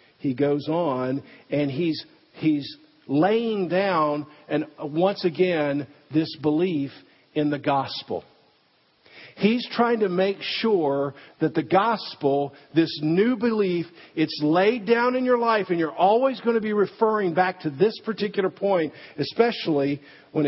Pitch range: 145-195 Hz